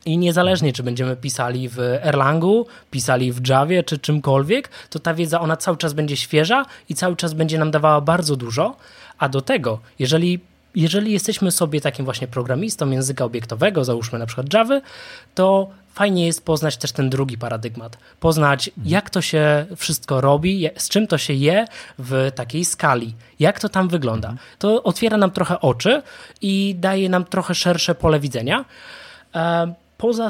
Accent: native